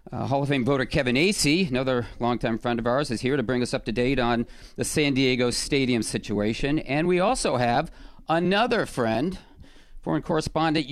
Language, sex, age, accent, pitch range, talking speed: English, male, 40-59, American, 110-155 Hz, 185 wpm